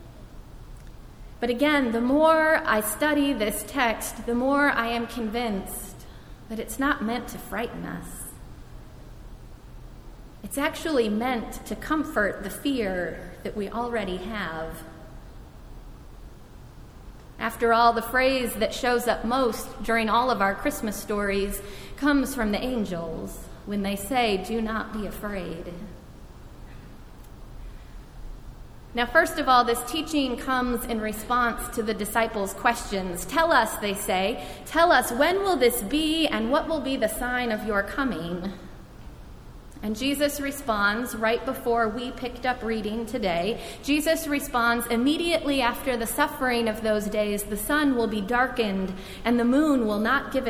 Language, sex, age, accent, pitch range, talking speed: English, female, 30-49, American, 210-260 Hz, 140 wpm